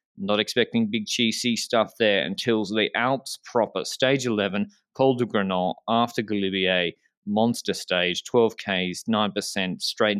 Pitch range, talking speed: 100-130 Hz, 135 wpm